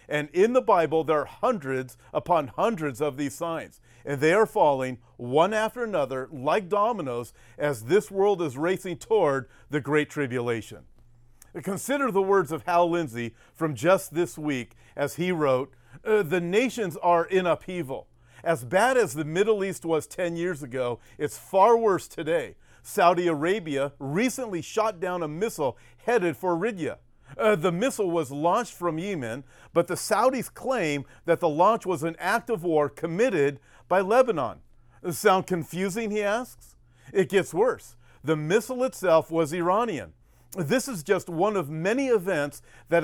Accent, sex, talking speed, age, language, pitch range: American, male, 160 wpm, 40-59, English, 145-195 Hz